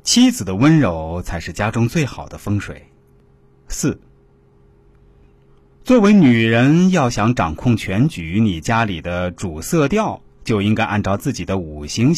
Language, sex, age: Chinese, male, 30-49